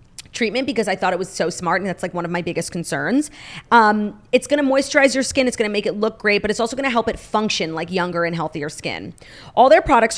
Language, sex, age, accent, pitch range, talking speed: English, female, 30-49, American, 180-245 Hz, 270 wpm